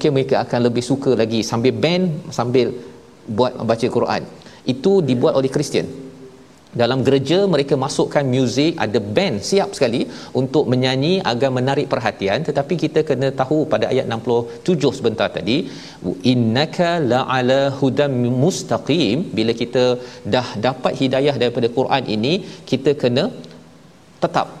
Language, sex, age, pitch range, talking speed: Malayalam, male, 40-59, 120-145 Hz, 130 wpm